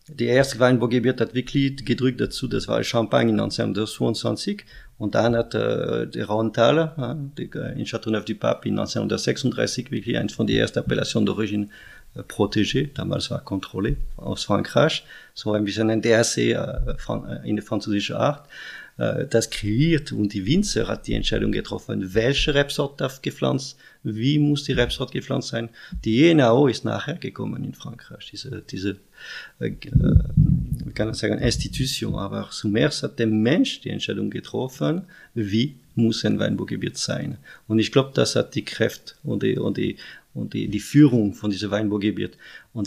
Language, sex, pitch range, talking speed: German, male, 110-130 Hz, 165 wpm